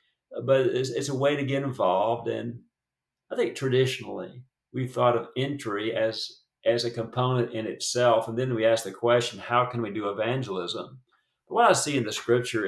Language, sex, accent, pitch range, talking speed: English, male, American, 115-140 Hz, 185 wpm